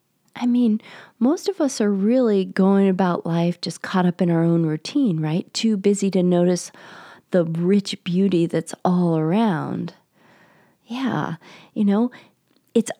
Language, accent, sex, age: English, American, female, 40-59